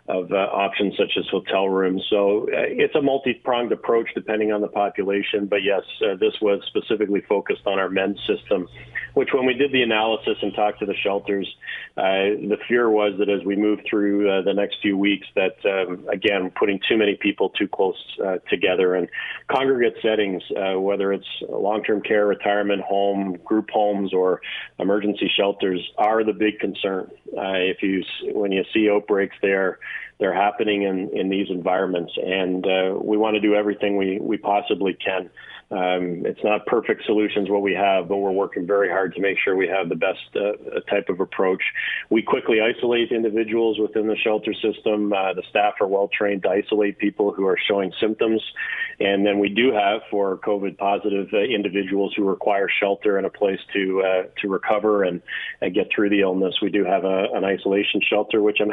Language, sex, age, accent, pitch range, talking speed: English, male, 40-59, American, 100-110 Hz, 190 wpm